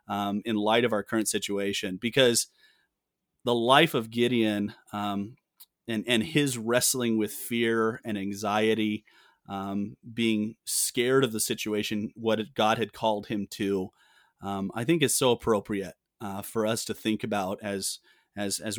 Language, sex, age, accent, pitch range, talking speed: English, male, 30-49, American, 105-120 Hz, 155 wpm